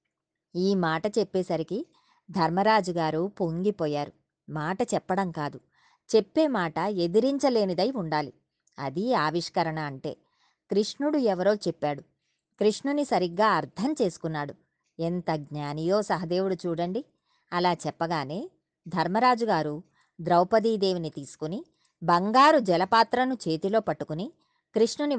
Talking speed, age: 85 wpm, 20-39